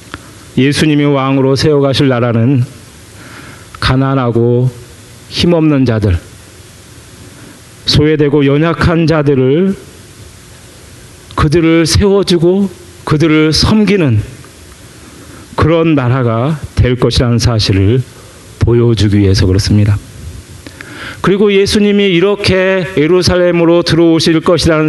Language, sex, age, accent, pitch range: Korean, male, 40-59, native, 115-160 Hz